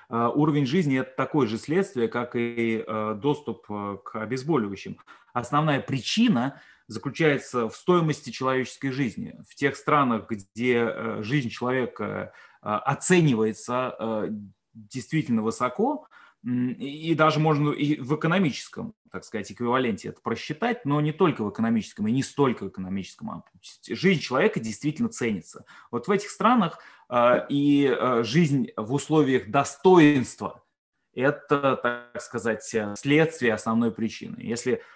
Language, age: Russian, 20-39